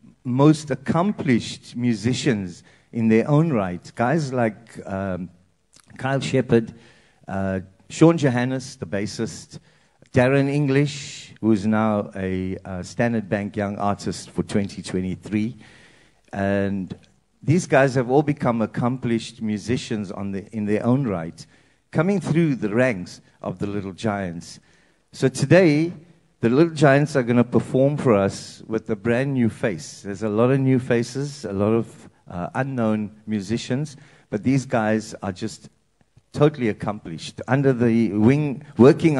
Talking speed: 135 wpm